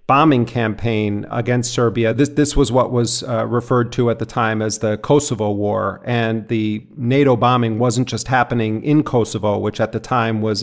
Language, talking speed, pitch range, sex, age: English, 185 wpm, 110-125 Hz, male, 40-59